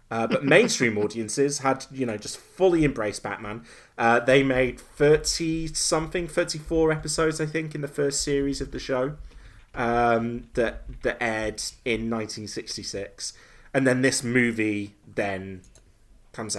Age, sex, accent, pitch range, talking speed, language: 30-49, male, British, 105-145 Hz, 140 wpm, English